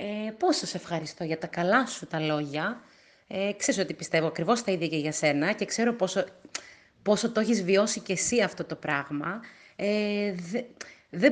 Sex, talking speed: female, 165 wpm